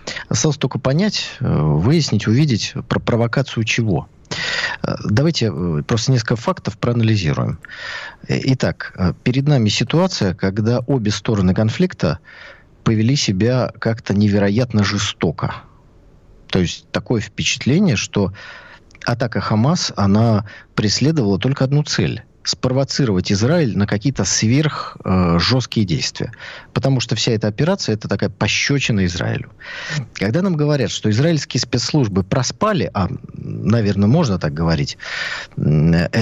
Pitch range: 105-145 Hz